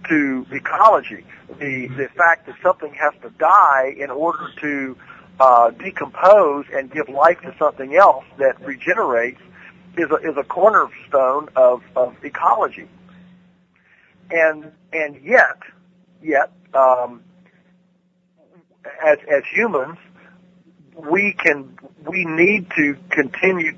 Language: English